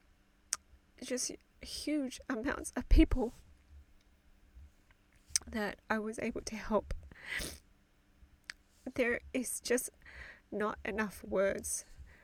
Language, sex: English, female